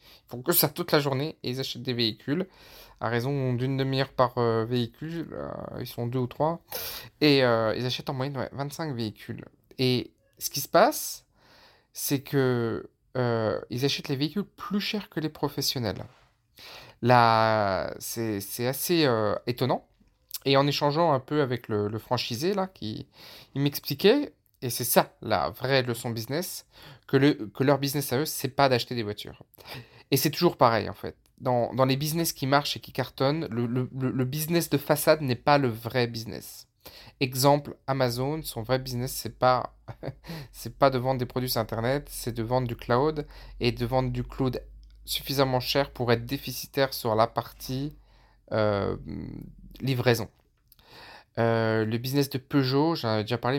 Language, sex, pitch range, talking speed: French, male, 115-145 Hz, 180 wpm